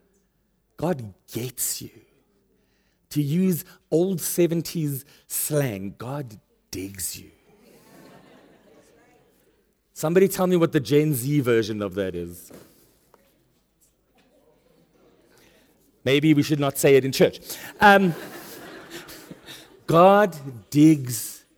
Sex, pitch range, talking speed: male, 135-185 Hz, 90 wpm